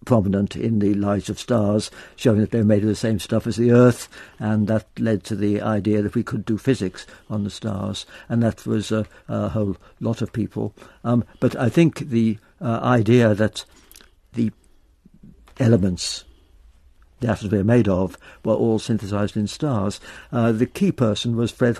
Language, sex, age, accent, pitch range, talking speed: English, male, 60-79, British, 105-120 Hz, 185 wpm